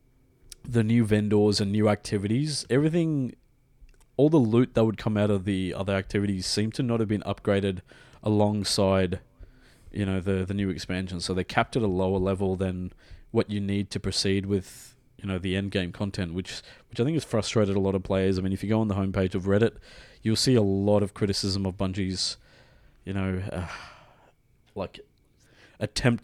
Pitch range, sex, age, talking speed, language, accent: 100-120 Hz, male, 20-39, 195 wpm, English, Australian